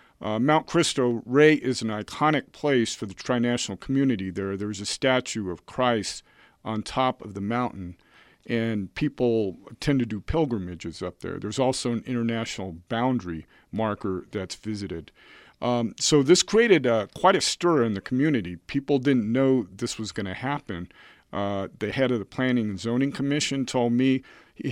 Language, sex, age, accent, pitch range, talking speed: English, male, 50-69, American, 110-135 Hz, 170 wpm